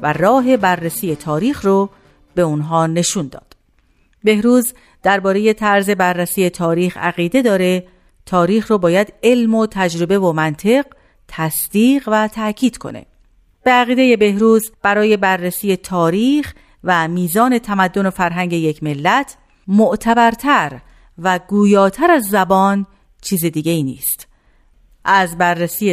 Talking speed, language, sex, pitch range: 120 wpm, Persian, female, 175-235 Hz